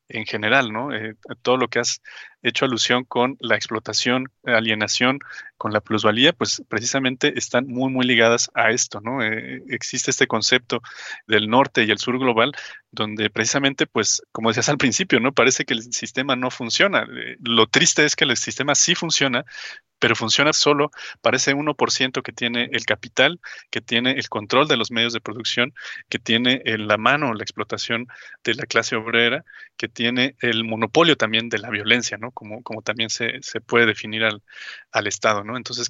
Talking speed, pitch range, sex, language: 185 wpm, 115-135 Hz, male, Spanish